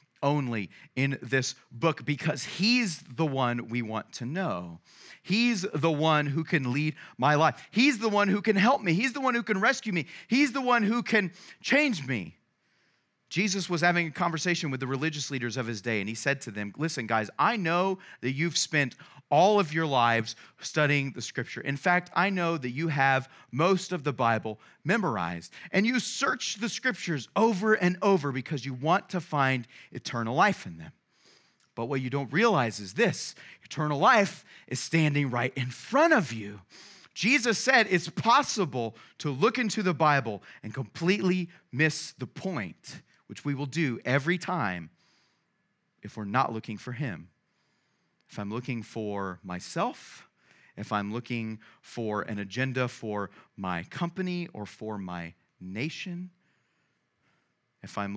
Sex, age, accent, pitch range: male, 30-49, American, 115-175 Hz